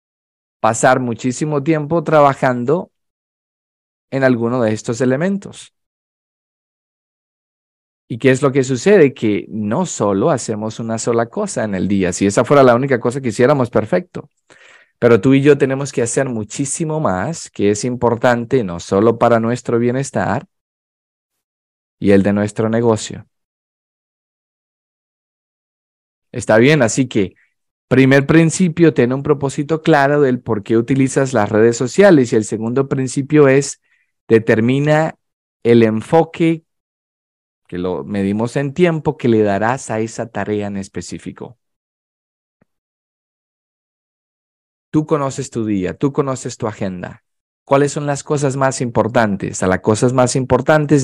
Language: Spanish